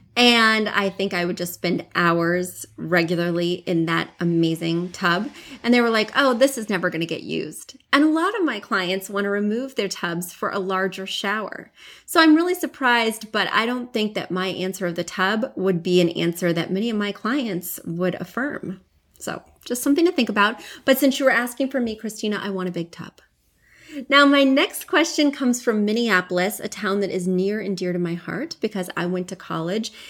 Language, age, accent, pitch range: English, 30-49, American, 175-230 Hz